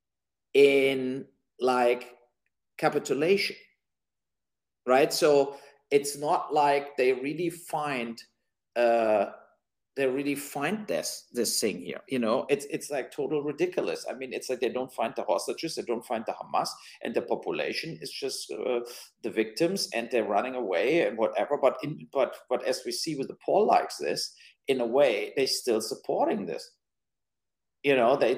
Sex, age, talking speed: male, 50-69, 160 wpm